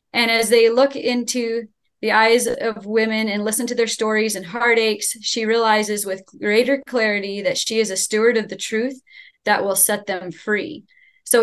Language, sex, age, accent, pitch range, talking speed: English, female, 20-39, American, 205-245 Hz, 185 wpm